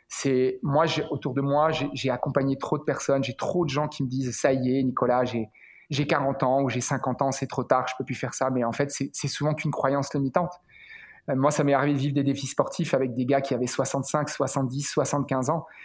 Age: 30-49